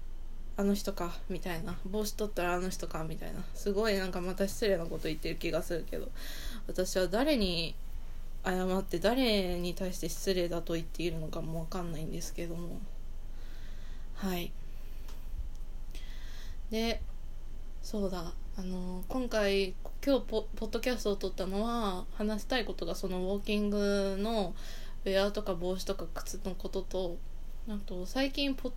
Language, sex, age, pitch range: Japanese, female, 20-39, 170-220 Hz